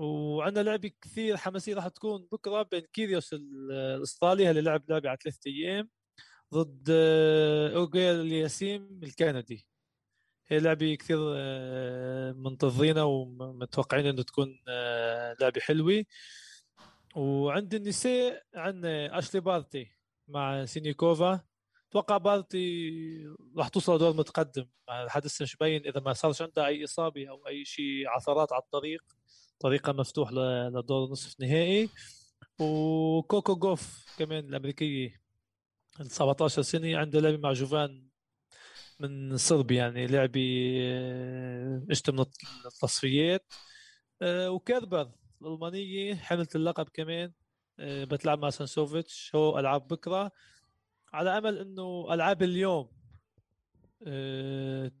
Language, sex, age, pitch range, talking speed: Arabic, male, 20-39, 135-170 Hz, 110 wpm